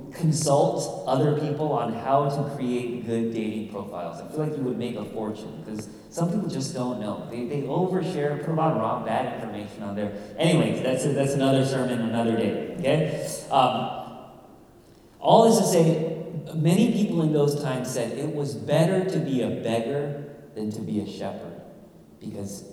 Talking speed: 170 wpm